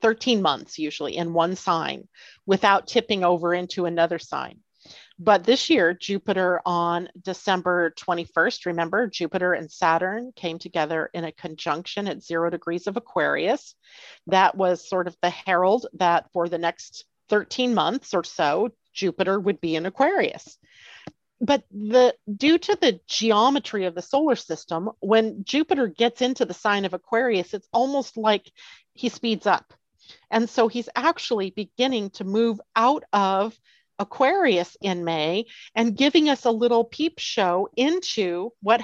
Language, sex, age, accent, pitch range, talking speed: English, female, 40-59, American, 180-240 Hz, 150 wpm